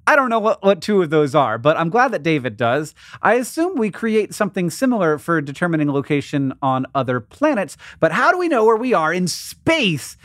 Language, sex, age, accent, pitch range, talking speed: English, male, 30-49, American, 135-185 Hz, 215 wpm